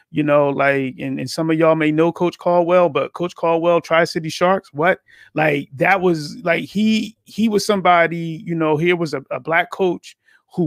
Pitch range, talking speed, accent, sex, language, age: 145-175 Hz, 195 wpm, American, male, English, 30-49